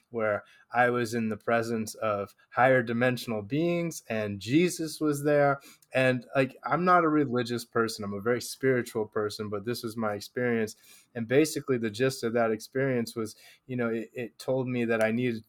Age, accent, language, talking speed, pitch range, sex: 20-39, American, English, 185 wpm, 105-120 Hz, male